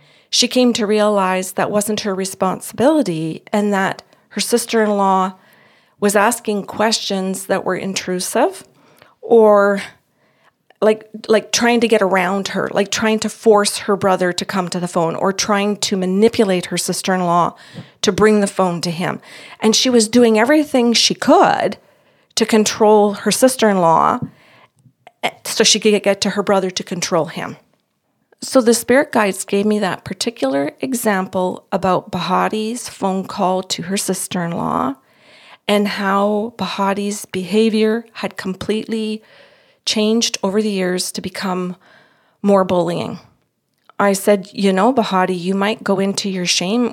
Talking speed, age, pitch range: 140 wpm, 40-59, 185-215 Hz